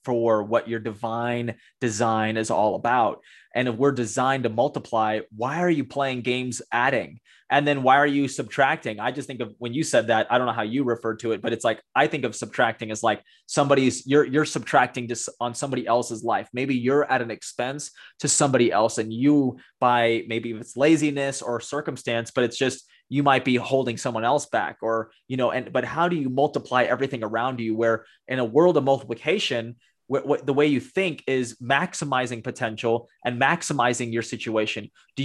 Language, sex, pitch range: English, male, 120-145 Hz